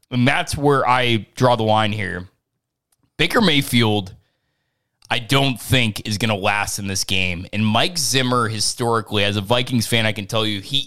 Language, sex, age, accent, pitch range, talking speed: English, male, 20-39, American, 110-145 Hz, 180 wpm